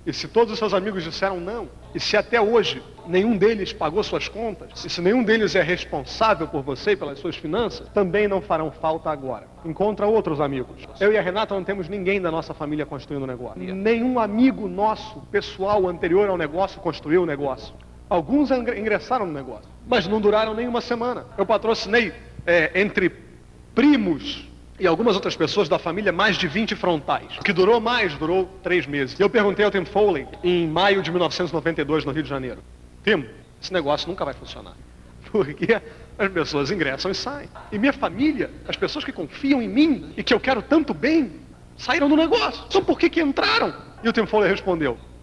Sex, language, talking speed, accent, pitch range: male, Portuguese, 190 wpm, Brazilian, 160-230 Hz